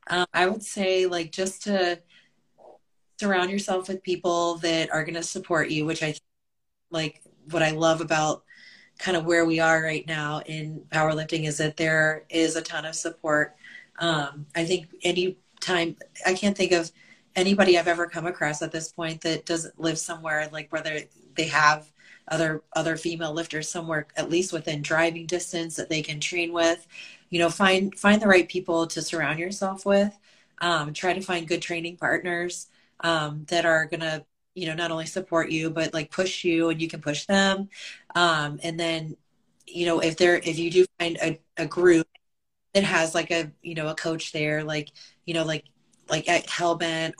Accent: American